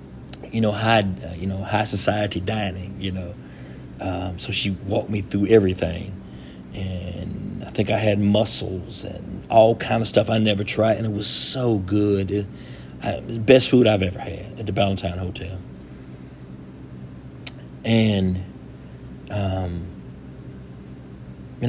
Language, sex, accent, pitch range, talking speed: English, male, American, 90-120 Hz, 145 wpm